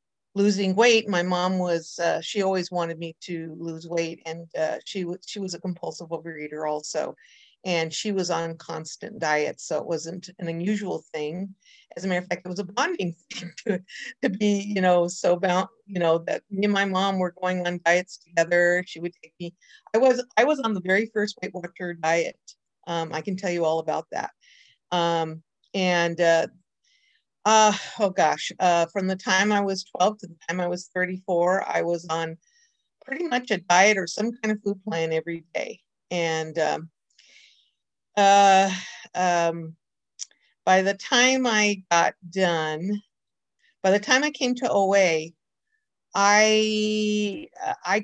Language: English